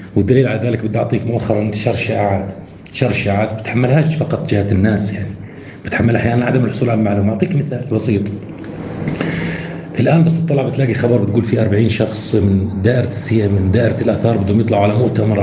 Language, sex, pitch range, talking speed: Arabic, male, 95-125 Hz, 170 wpm